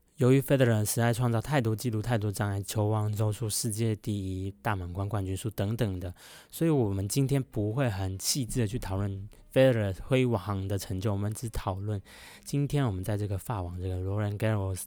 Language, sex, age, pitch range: Chinese, male, 20-39, 95-120 Hz